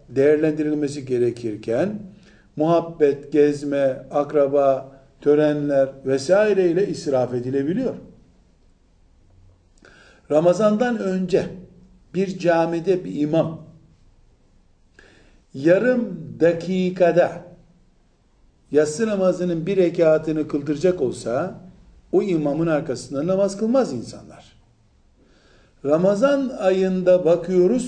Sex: male